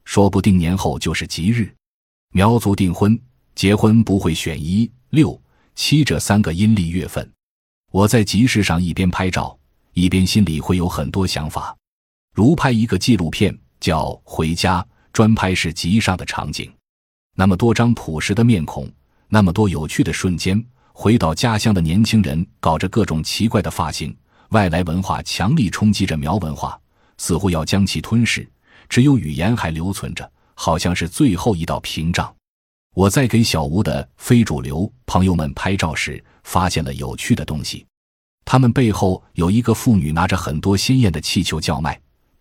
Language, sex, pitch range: Chinese, male, 80-110 Hz